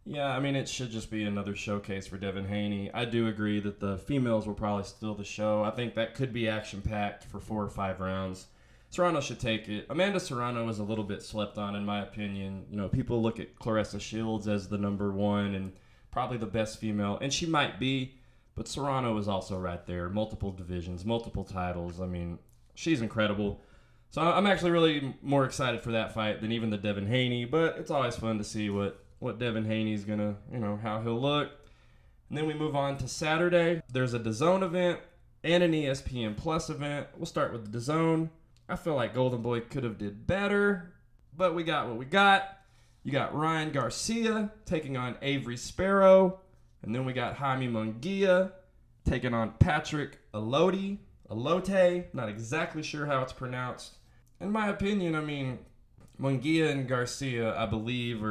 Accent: American